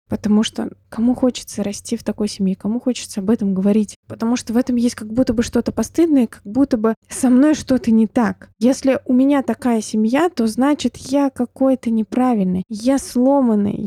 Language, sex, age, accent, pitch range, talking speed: Russian, female, 20-39, native, 210-255 Hz, 185 wpm